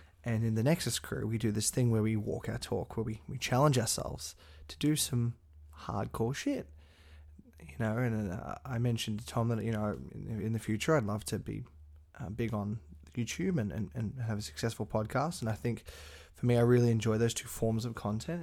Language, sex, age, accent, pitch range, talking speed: English, male, 20-39, Australian, 80-115 Hz, 220 wpm